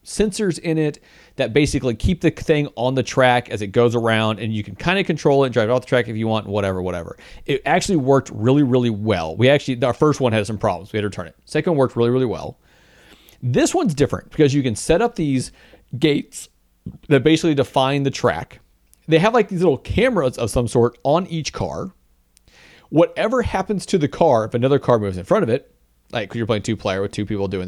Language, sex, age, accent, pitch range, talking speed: English, male, 40-59, American, 105-155 Hz, 230 wpm